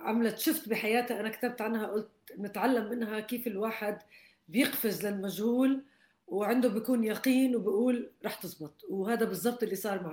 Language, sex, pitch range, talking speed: Arabic, female, 180-230 Hz, 140 wpm